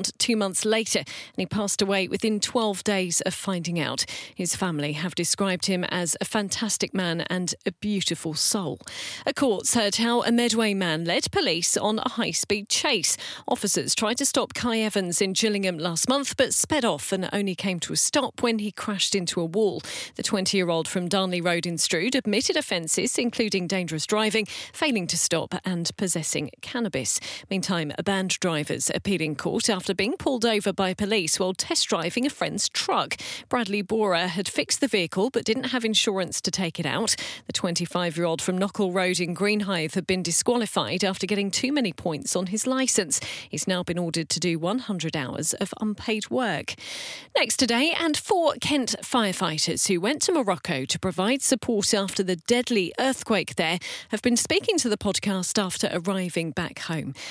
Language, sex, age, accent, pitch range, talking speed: English, female, 40-59, British, 175-220 Hz, 180 wpm